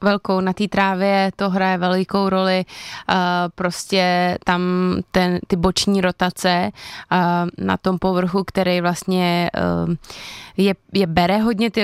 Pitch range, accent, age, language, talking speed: 180-195 Hz, native, 20-39, Czech, 120 wpm